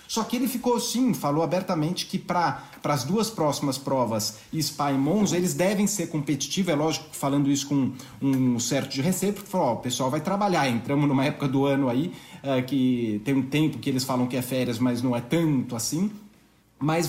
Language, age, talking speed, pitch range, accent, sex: Portuguese, 40-59, 210 wpm, 135-180 Hz, Brazilian, male